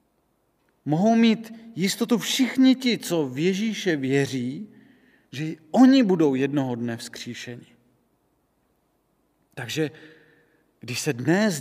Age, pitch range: 40-59, 155-225 Hz